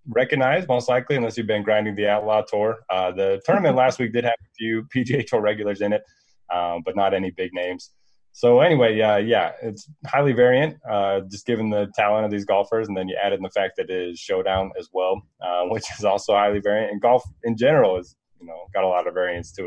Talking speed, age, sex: 240 wpm, 20-39, male